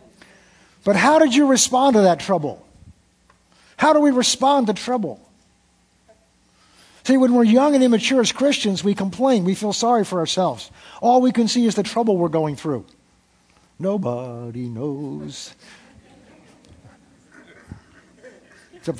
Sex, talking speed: male, 135 wpm